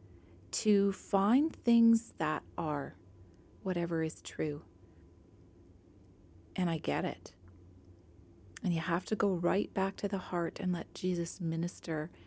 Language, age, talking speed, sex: English, 40-59, 125 wpm, female